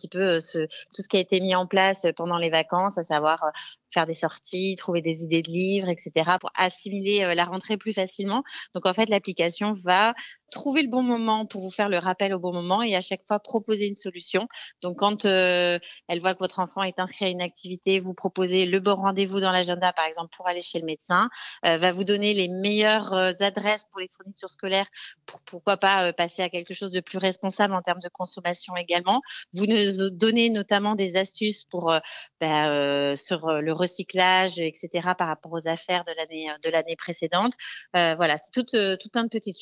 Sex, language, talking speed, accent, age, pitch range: female, French, 215 wpm, French, 30-49, 175-205 Hz